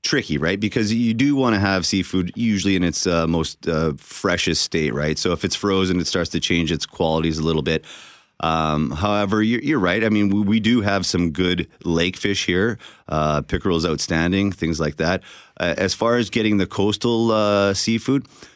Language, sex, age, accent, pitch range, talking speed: English, male, 30-49, American, 80-100 Hz, 200 wpm